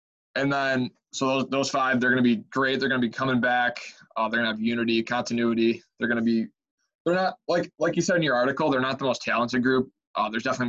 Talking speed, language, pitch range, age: 255 wpm, English, 115-140 Hz, 20-39